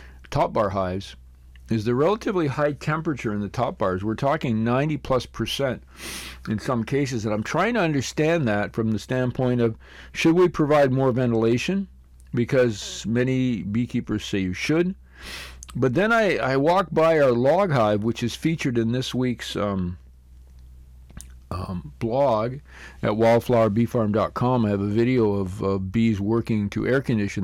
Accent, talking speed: American, 155 wpm